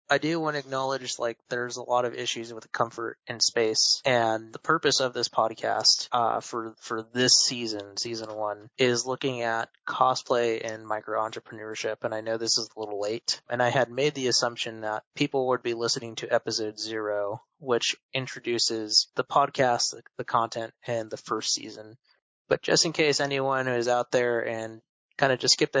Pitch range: 110-130 Hz